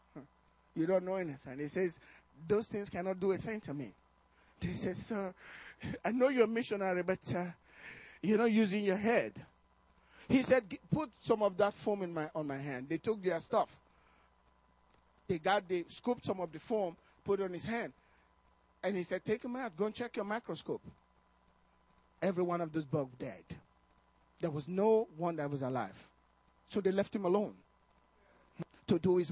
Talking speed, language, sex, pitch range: 185 wpm, English, male, 155-230 Hz